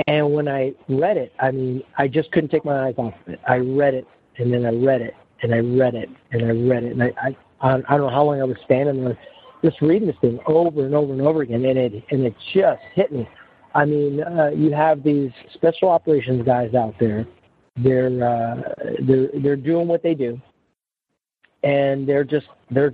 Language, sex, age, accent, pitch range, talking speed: English, male, 40-59, American, 125-155 Hz, 215 wpm